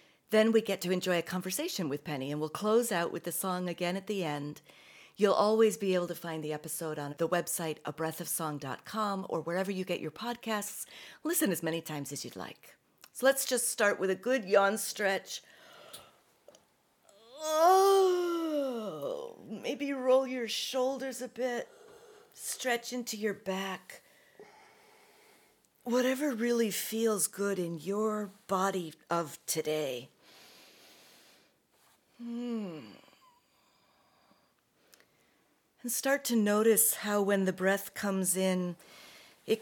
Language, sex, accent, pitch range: English, female, American, 175-235 Hz